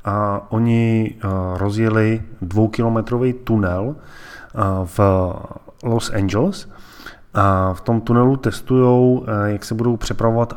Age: 20-39